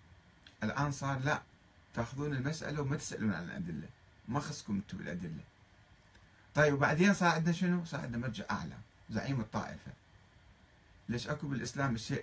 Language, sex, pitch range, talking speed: Arabic, male, 105-165 Hz, 130 wpm